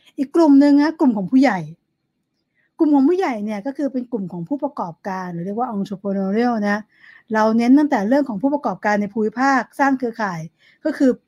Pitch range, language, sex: 220-275 Hz, Thai, female